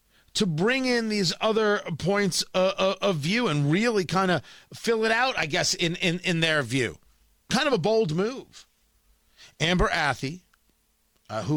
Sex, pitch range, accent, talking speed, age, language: male, 145-225 Hz, American, 160 wpm, 40-59, English